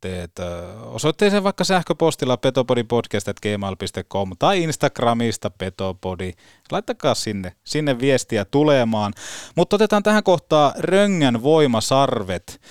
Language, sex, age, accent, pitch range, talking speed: Finnish, male, 30-49, native, 110-150 Hz, 90 wpm